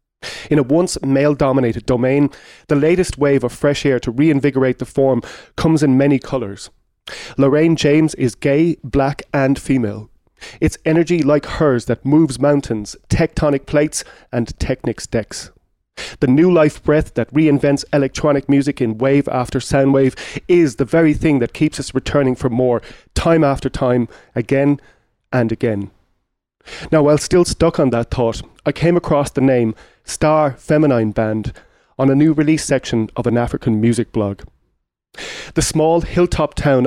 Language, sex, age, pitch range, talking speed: English, male, 30-49, 120-150 Hz, 155 wpm